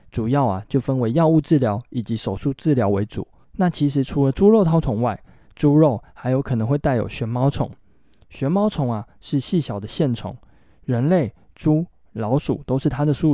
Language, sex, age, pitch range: Chinese, male, 20-39, 110-145 Hz